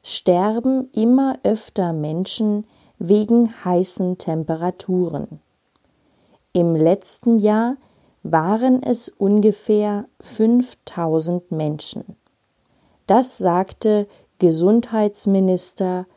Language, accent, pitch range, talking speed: German, German, 175-230 Hz, 65 wpm